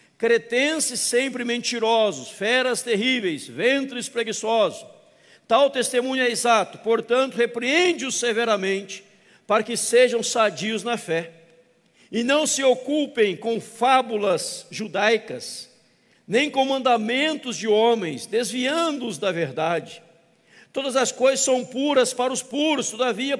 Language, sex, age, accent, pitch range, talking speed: Portuguese, male, 60-79, Brazilian, 225-270 Hz, 115 wpm